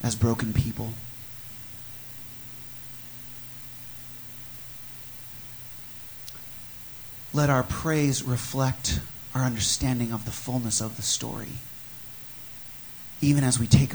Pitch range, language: 115-125 Hz, English